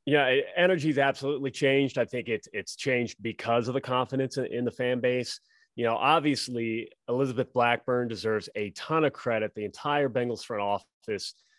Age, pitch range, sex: 30-49, 110-135 Hz, male